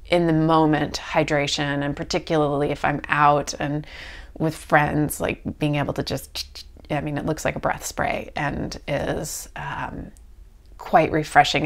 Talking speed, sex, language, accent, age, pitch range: 155 wpm, female, English, American, 30-49, 140-170 Hz